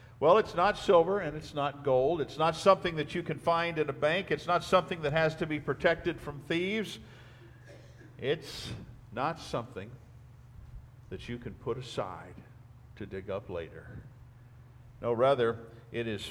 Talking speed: 160 wpm